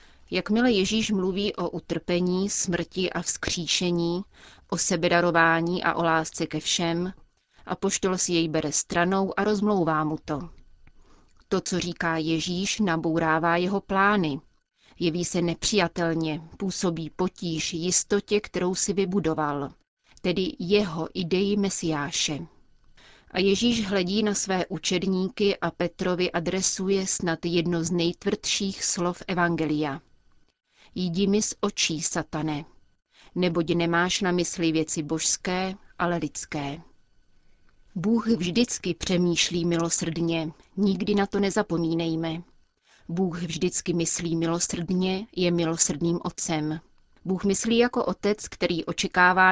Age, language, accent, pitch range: 30-49, Czech, native, 165-190 Hz